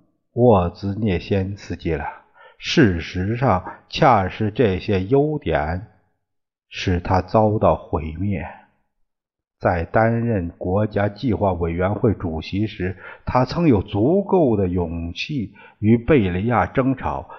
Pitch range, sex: 90-125 Hz, male